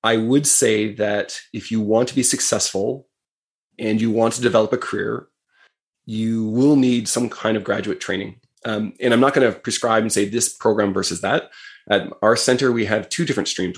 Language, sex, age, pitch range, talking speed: English, male, 20-39, 105-115 Hz, 200 wpm